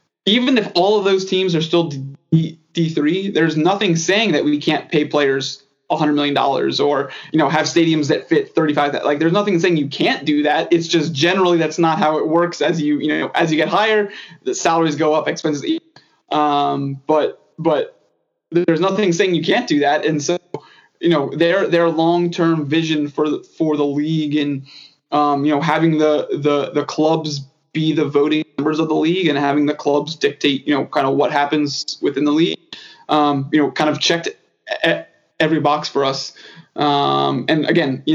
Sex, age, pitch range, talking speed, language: male, 20-39, 145-170 Hz, 200 wpm, English